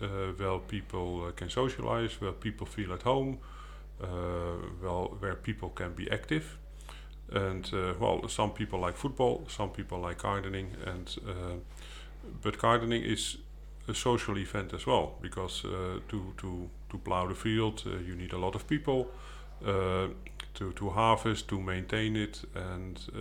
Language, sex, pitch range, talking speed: English, male, 90-105 Hz, 160 wpm